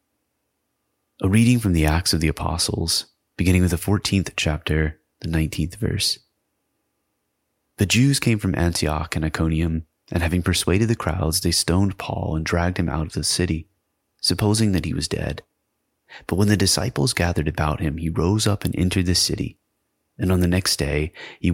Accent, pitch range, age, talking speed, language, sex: American, 80-100 Hz, 30-49, 175 wpm, English, male